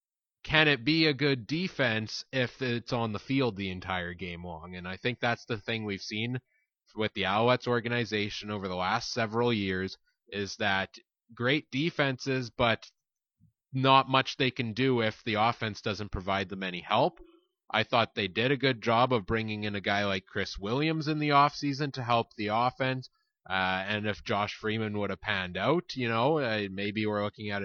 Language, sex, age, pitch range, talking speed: English, male, 20-39, 105-135 Hz, 190 wpm